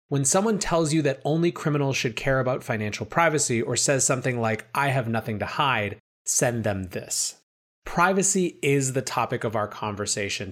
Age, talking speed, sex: 30-49, 175 wpm, male